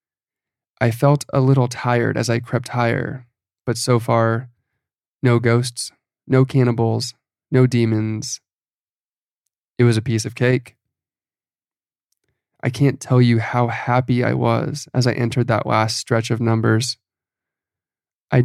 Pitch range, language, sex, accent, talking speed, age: 115-130 Hz, English, male, American, 135 wpm, 20-39